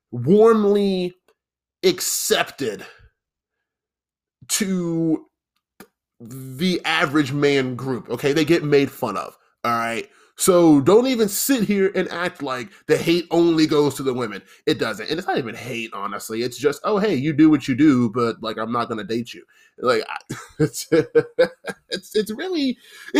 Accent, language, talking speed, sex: American, English, 150 wpm, male